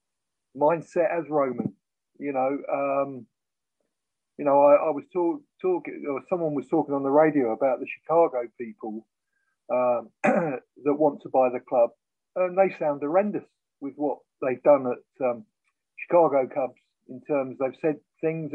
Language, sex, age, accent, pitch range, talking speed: English, male, 50-69, British, 140-165 Hz, 155 wpm